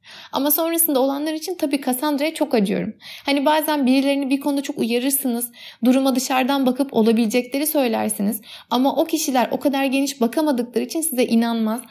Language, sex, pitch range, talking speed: Turkish, female, 230-290 Hz, 150 wpm